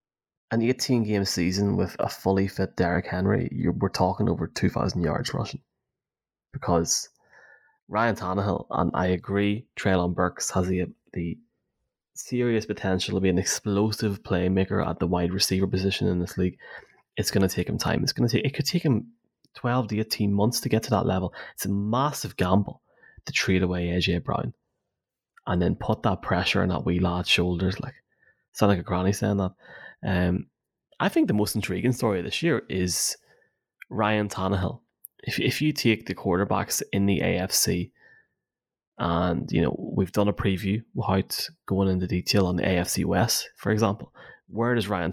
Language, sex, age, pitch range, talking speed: English, male, 20-39, 90-110 Hz, 175 wpm